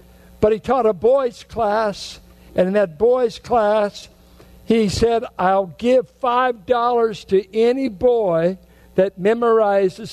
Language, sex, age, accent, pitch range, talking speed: English, male, 60-79, American, 150-210 Hz, 125 wpm